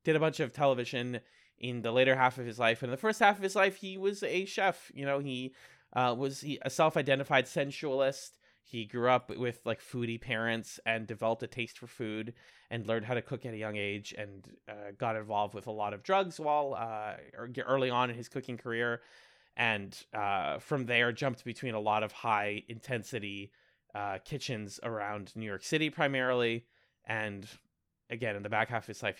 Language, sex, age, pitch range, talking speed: English, male, 20-39, 110-135 Hz, 200 wpm